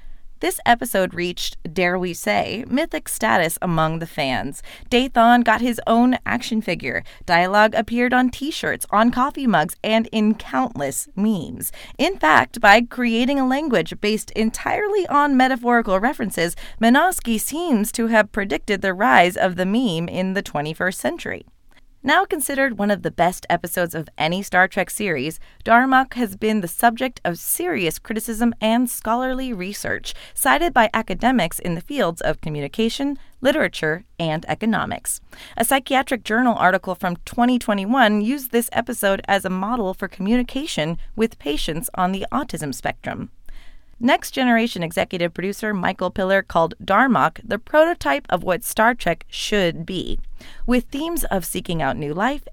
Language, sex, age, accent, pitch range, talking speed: English, female, 30-49, American, 180-245 Hz, 150 wpm